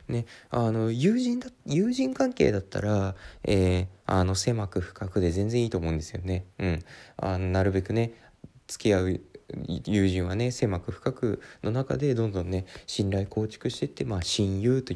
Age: 20-39